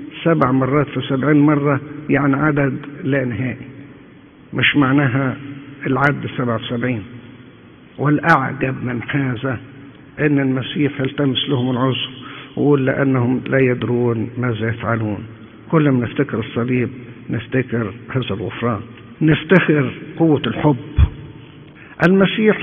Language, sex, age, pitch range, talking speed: English, male, 50-69, 125-145 Hz, 105 wpm